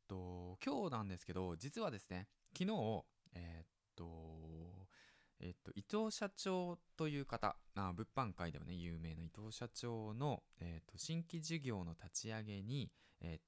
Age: 20-39